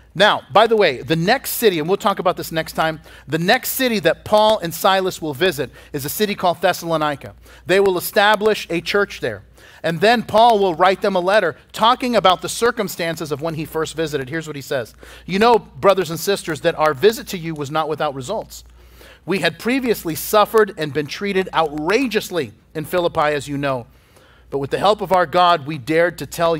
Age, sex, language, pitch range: 40-59, male, English, 150-195 Hz